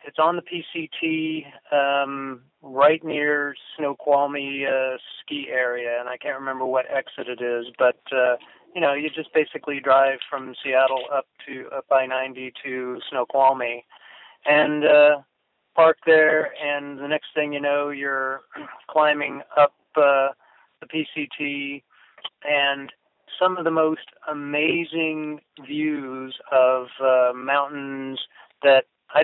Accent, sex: American, male